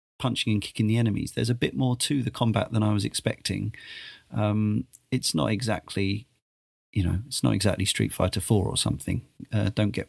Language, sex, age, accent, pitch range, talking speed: English, male, 40-59, British, 100-115 Hz, 195 wpm